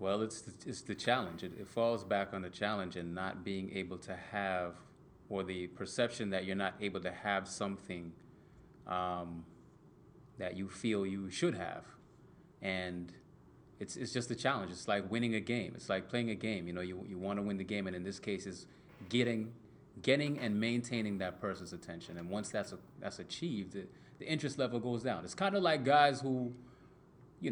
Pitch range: 95-120 Hz